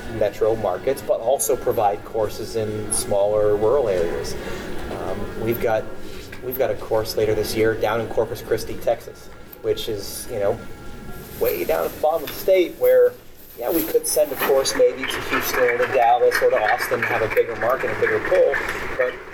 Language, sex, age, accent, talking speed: English, male, 30-49, American, 185 wpm